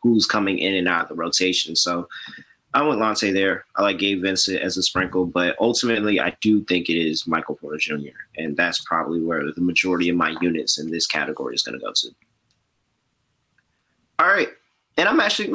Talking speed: 200 wpm